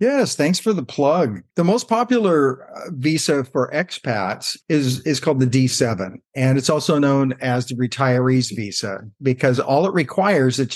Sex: male